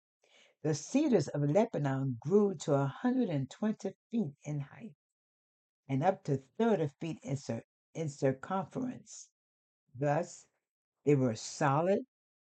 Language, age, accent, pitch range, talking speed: English, 60-79, American, 130-175 Hz, 125 wpm